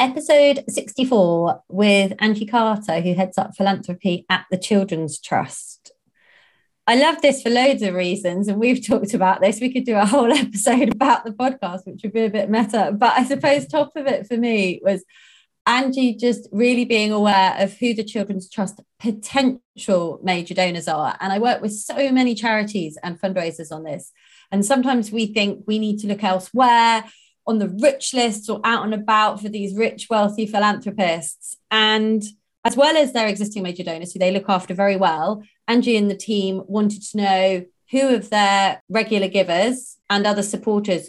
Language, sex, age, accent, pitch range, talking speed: English, female, 30-49, British, 190-230 Hz, 185 wpm